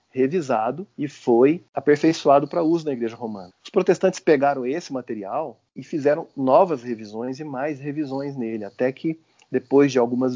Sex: male